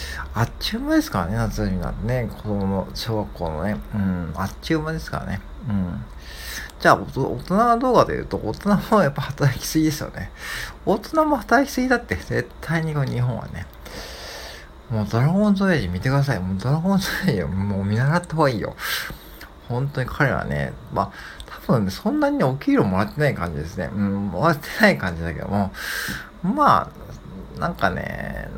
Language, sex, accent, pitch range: Japanese, male, native, 100-155 Hz